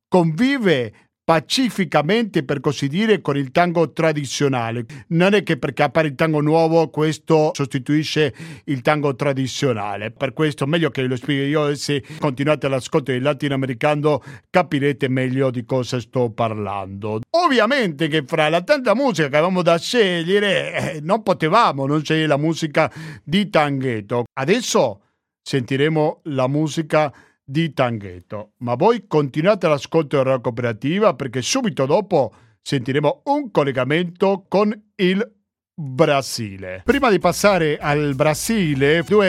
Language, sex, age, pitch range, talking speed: Italian, male, 50-69, 135-170 Hz, 135 wpm